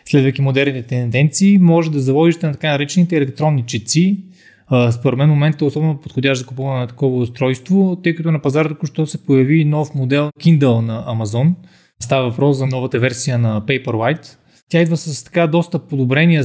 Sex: male